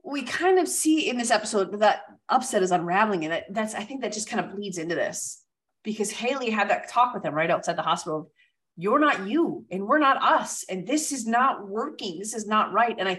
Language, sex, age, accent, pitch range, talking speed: English, female, 30-49, American, 170-225 Hz, 235 wpm